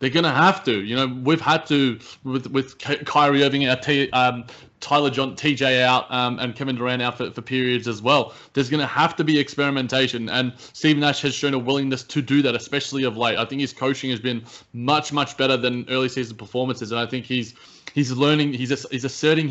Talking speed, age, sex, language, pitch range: 220 wpm, 20-39, male, English, 125-140 Hz